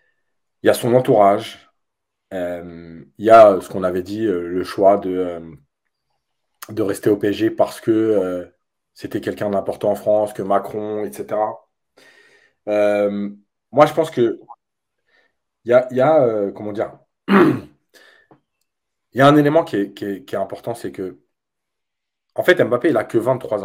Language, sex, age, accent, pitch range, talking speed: French, male, 30-49, French, 105-150 Hz, 160 wpm